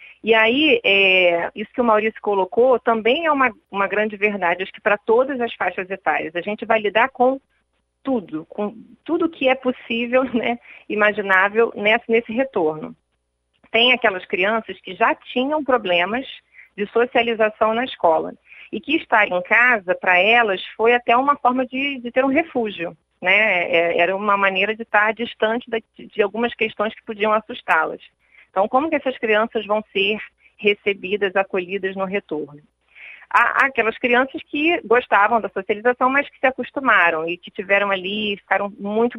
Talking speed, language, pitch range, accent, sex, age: 160 wpm, Portuguese, 190-240 Hz, Brazilian, female, 30-49